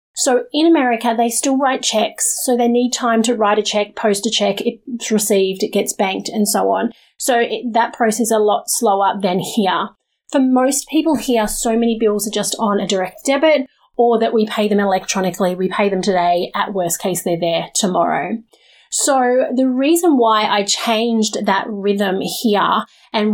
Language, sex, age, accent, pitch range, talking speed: English, female, 30-49, Australian, 205-250 Hz, 195 wpm